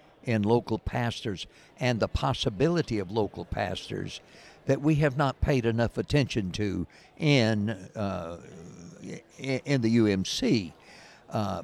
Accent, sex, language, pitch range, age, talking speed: American, male, English, 105-135 Hz, 60-79, 120 wpm